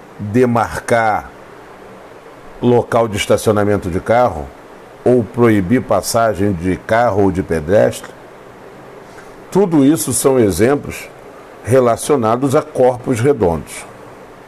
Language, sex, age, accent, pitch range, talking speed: Portuguese, male, 60-79, Brazilian, 105-140 Hz, 90 wpm